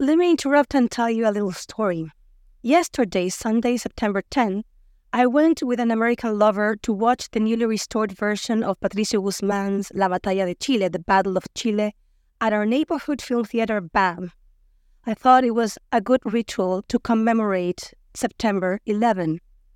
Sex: female